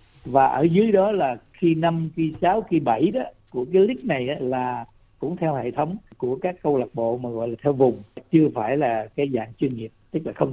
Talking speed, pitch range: 240 wpm, 125-170 Hz